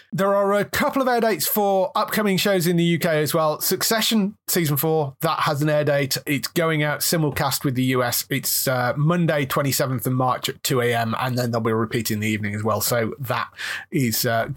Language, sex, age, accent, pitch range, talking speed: English, male, 30-49, British, 135-195 Hz, 215 wpm